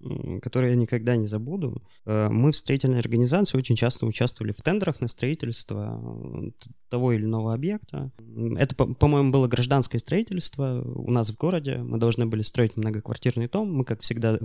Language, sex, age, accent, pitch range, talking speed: Russian, male, 20-39, native, 110-135 Hz, 160 wpm